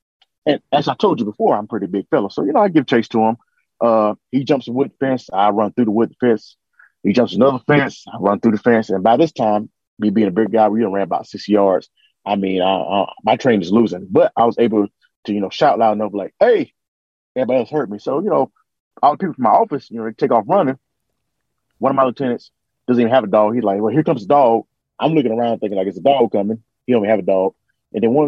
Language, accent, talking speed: English, American, 270 wpm